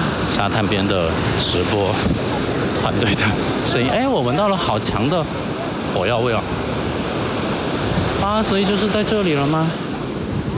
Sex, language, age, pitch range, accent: male, Chinese, 50-69, 105-150 Hz, native